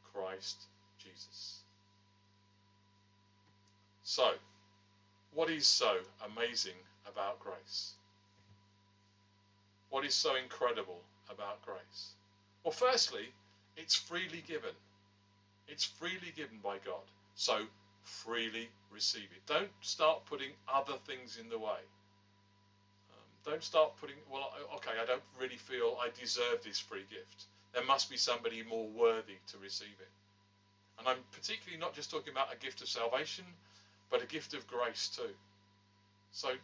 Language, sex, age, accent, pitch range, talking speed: English, male, 40-59, British, 100-130 Hz, 130 wpm